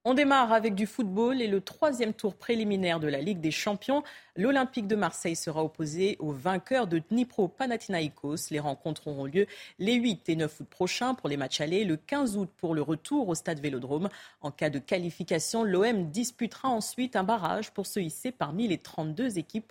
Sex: female